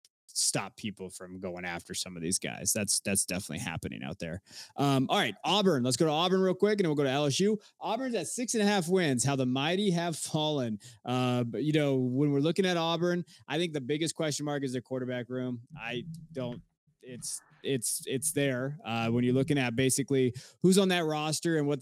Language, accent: English, American